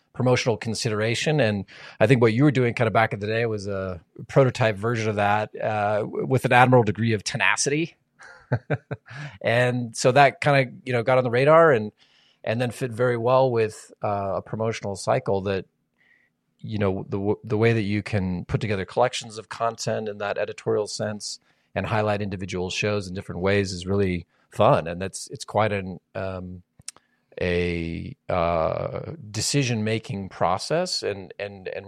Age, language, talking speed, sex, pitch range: 30-49, English, 175 wpm, male, 95-115 Hz